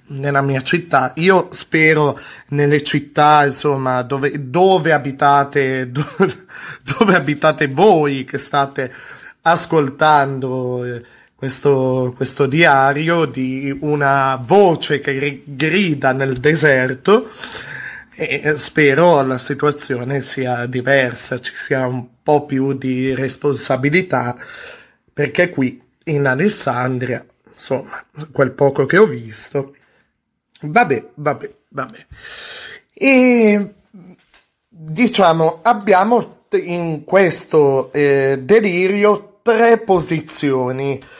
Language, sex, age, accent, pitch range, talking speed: Italian, male, 20-39, native, 135-185 Hz, 90 wpm